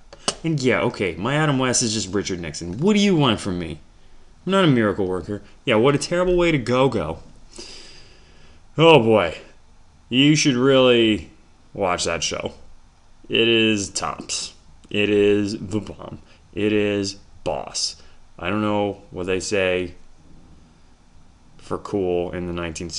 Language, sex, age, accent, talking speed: English, male, 20-39, American, 150 wpm